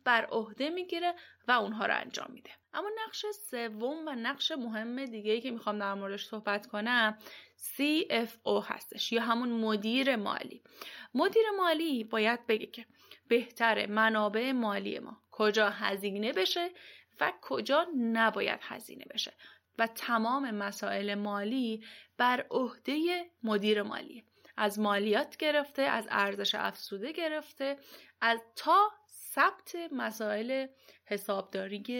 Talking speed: 120 wpm